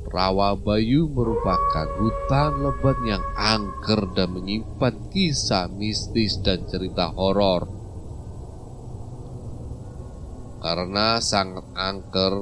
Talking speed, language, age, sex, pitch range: 75 wpm, Indonesian, 30-49, male, 90-115 Hz